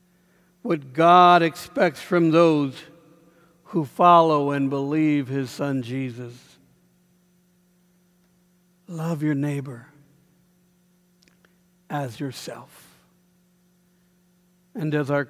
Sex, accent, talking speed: male, American, 80 wpm